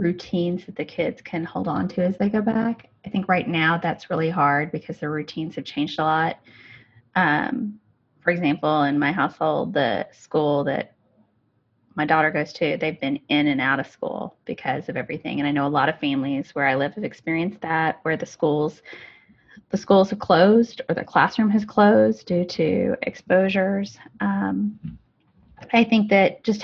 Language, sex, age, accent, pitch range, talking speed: English, female, 20-39, American, 155-205 Hz, 185 wpm